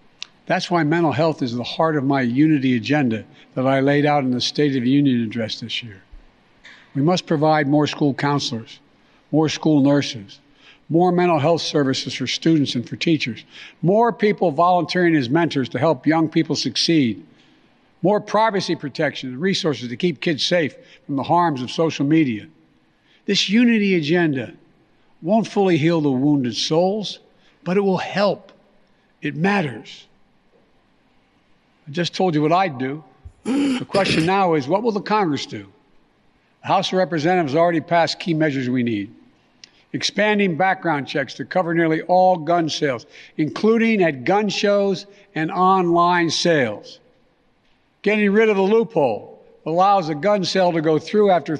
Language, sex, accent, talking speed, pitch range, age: English, male, American, 160 wpm, 145-190 Hz, 60-79